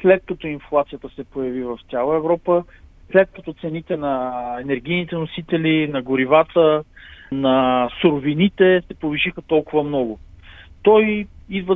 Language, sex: Bulgarian, male